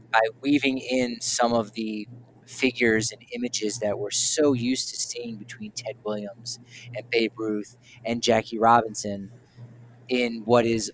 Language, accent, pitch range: English, American, 110-125 Hz